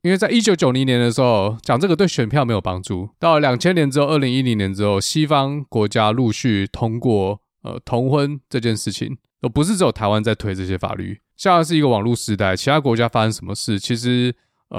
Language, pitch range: Chinese, 105-145 Hz